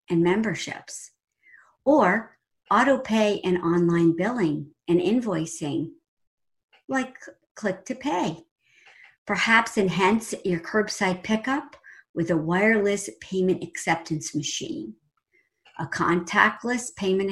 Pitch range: 165-225 Hz